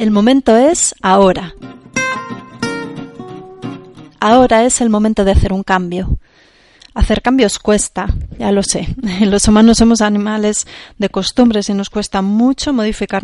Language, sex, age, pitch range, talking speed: Spanish, female, 30-49, 195-225 Hz, 130 wpm